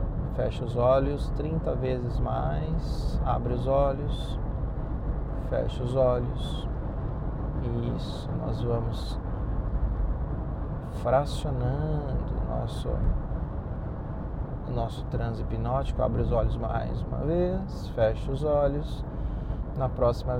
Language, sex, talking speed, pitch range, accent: Portuguese, male, 90 wpm, 120-145 Hz, Brazilian